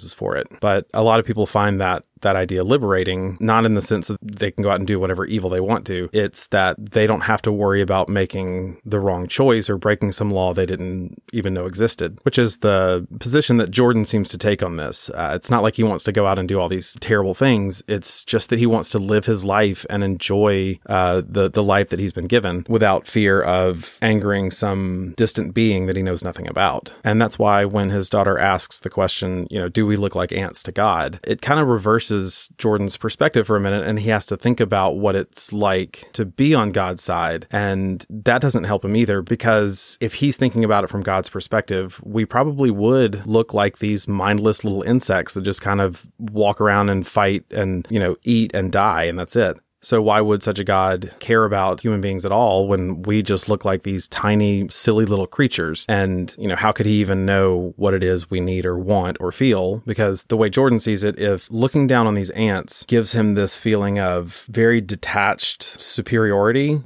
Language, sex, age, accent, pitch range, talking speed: English, male, 30-49, American, 95-110 Hz, 220 wpm